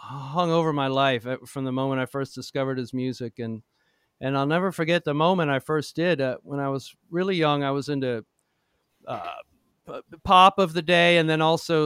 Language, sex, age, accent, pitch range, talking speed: English, male, 40-59, American, 130-160 Hz, 195 wpm